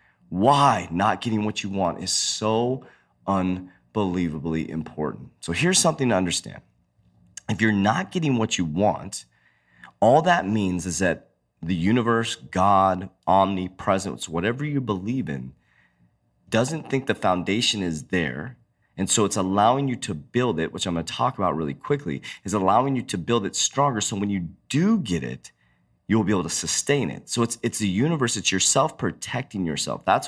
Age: 30-49